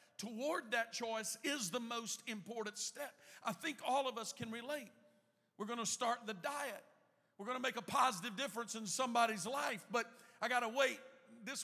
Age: 50-69